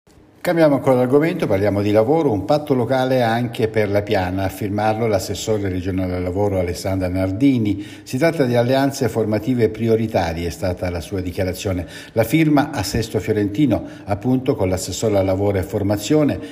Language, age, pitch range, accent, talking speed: Italian, 60-79, 95-125 Hz, native, 160 wpm